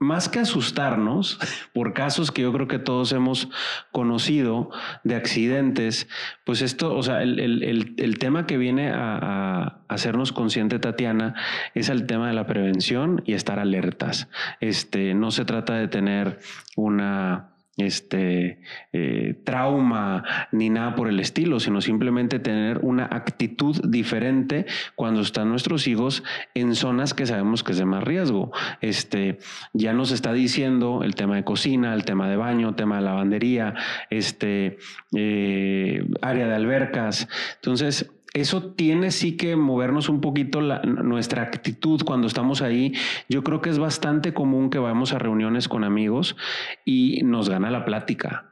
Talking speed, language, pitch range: 150 wpm, Spanish, 110-135 Hz